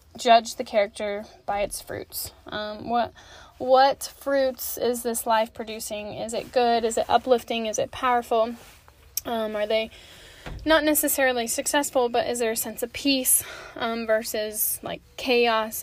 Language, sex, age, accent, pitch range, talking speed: English, female, 10-29, American, 215-255 Hz, 150 wpm